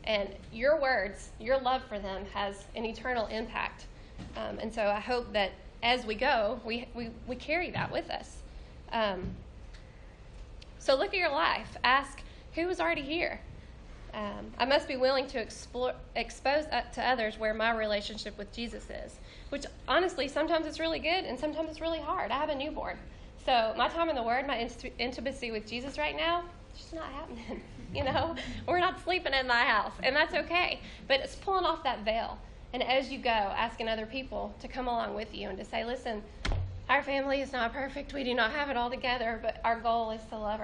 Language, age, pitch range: English, 10-29, 220-280 Hz